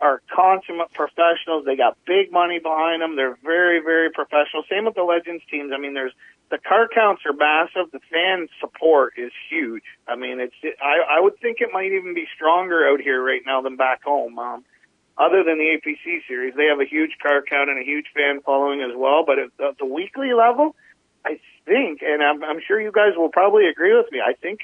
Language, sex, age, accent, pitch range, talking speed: English, male, 40-59, American, 155-220 Hz, 215 wpm